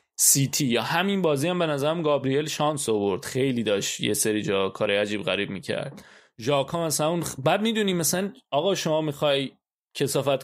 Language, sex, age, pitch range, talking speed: Persian, male, 20-39, 135-185 Hz, 165 wpm